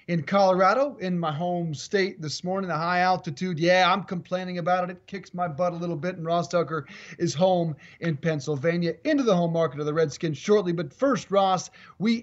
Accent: American